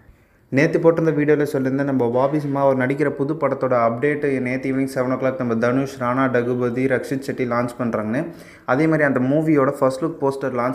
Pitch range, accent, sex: 125-145 Hz, native, male